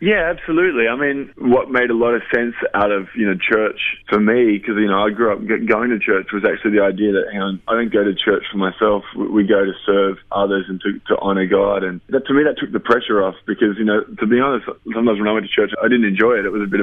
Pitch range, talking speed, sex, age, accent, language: 95-110 Hz, 280 wpm, male, 20-39, Australian, English